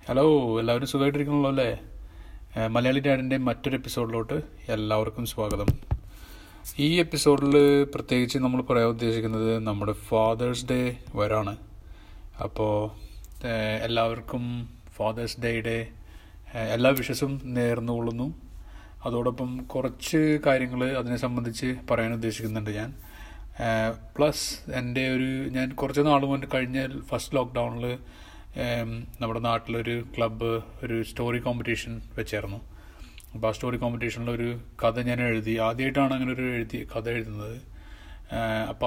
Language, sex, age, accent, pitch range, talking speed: Malayalam, male, 30-49, native, 110-130 Hz, 115 wpm